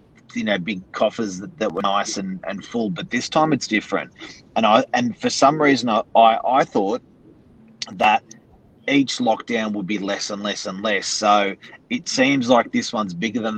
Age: 30-49